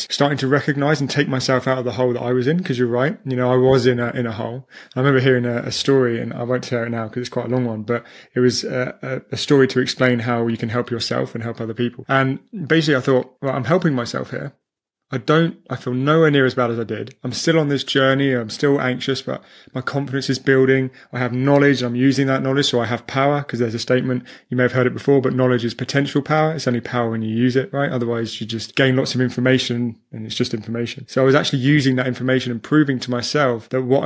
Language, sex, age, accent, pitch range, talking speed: English, male, 20-39, British, 125-140 Hz, 270 wpm